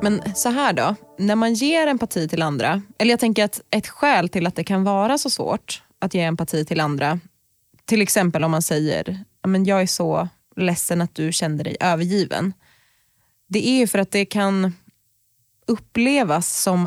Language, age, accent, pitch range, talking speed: Swedish, 20-39, native, 170-210 Hz, 185 wpm